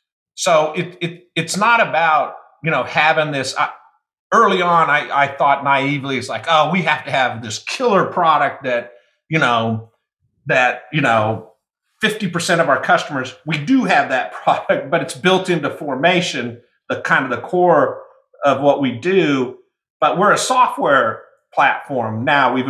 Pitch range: 125-165 Hz